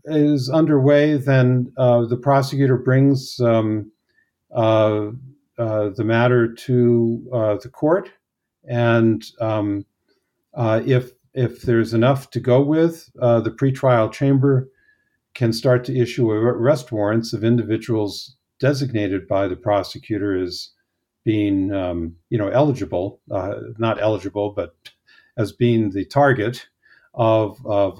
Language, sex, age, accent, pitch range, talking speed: English, male, 50-69, American, 105-130 Hz, 125 wpm